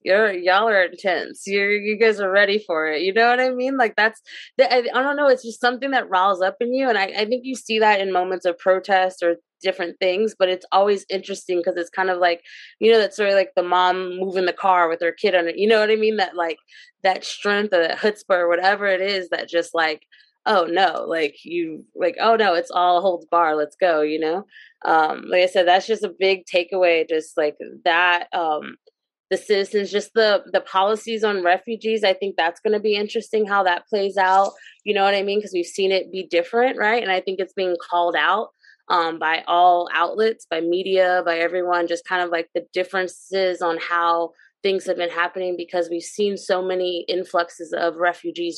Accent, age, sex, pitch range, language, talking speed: American, 20-39, female, 175-205 Hz, English, 225 wpm